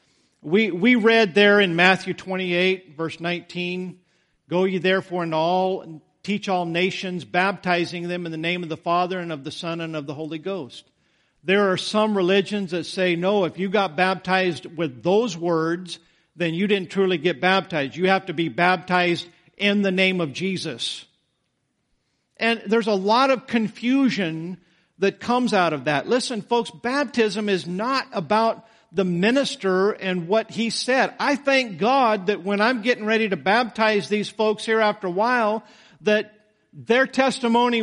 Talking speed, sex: 165 wpm, male